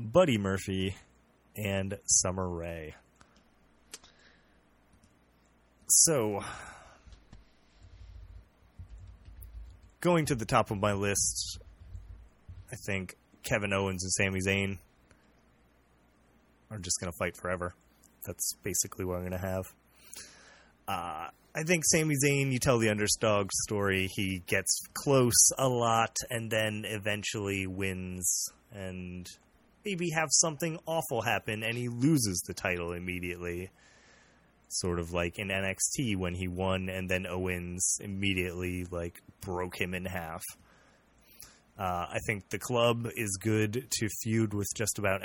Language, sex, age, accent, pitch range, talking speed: English, male, 30-49, American, 90-110 Hz, 120 wpm